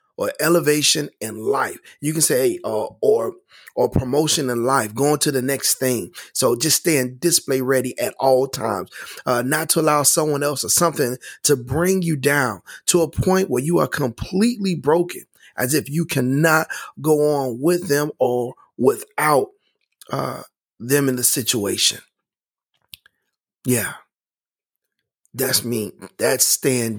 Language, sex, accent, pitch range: English, male, American, 125-165 Hz